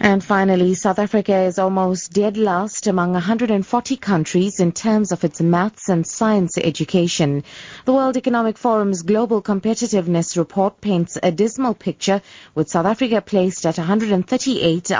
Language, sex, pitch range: English, female, 170-215 Hz